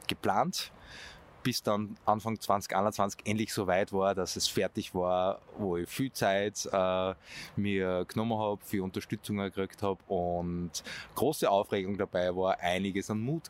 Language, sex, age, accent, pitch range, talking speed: German, male, 20-39, Austrian, 90-110 Hz, 145 wpm